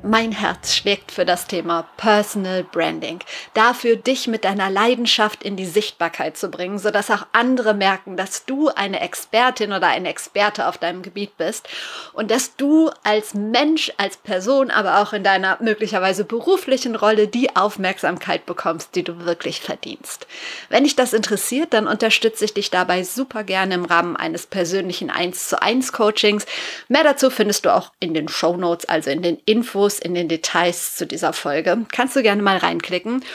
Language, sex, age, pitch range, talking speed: German, female, 30-49, 195-245 Hz, 175 wpm